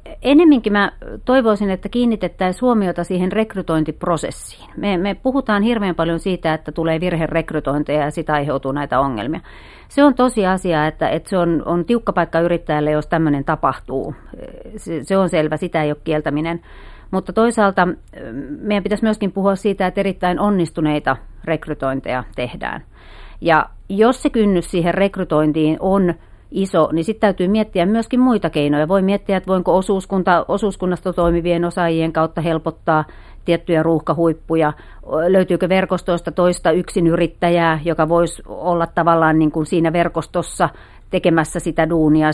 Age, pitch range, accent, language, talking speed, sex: 40-59, 155-195 Hz, native, Finnish, 140 wpm, female